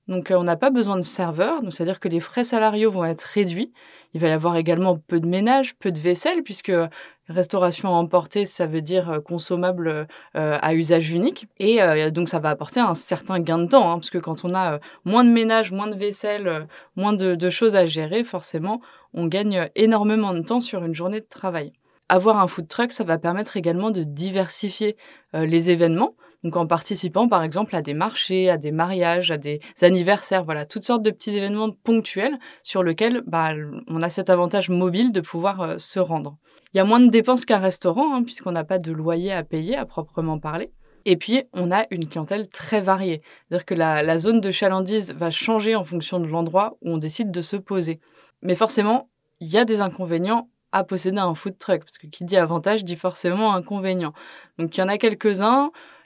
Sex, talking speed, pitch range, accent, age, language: female, 215 wpm, 170-210 Hz, French, 20-39, French